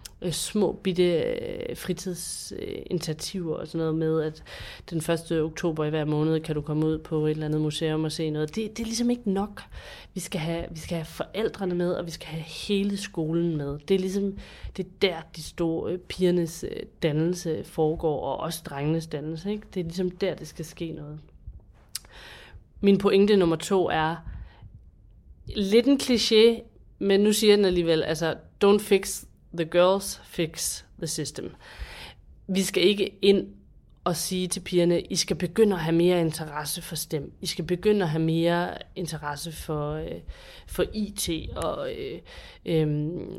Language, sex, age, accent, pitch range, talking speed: Danish, female, 30-49, native, 160-195 Hz, 170 wpm